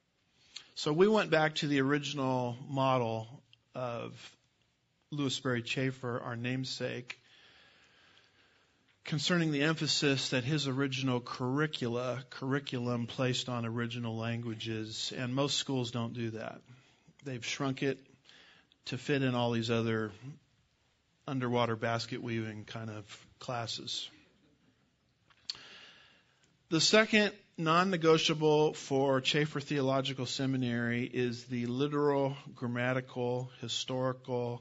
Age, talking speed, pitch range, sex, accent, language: 50-69, 100 wpm, 120-145 Hz, male, American, English